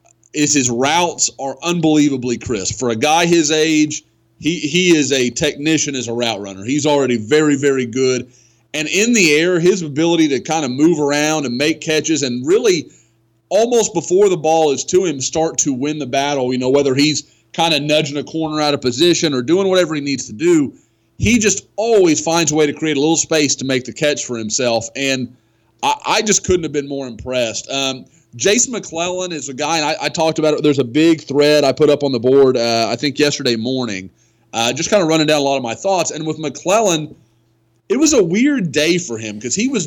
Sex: male